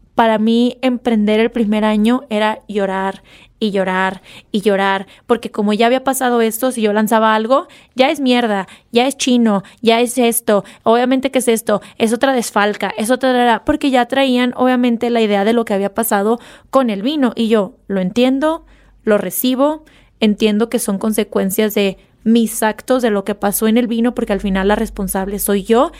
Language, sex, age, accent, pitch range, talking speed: English, female, 20-39, Mexican, 205-245 Hz, 185 wpm